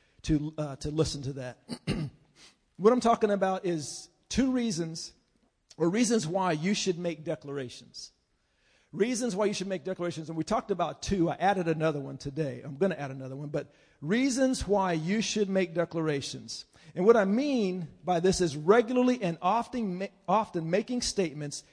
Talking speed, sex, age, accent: 175 wpm, male, 50-69, American